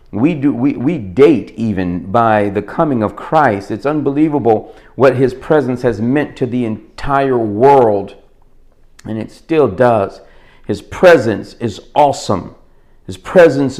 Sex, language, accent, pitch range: male, English, American, 115-140 Hz